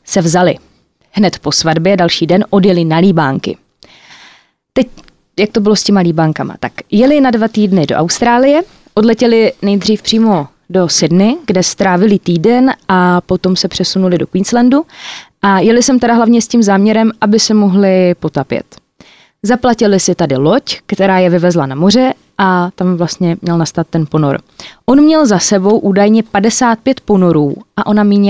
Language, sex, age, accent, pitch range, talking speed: Czech, female, 20-39, native, 180-220 Hz, 160 wpm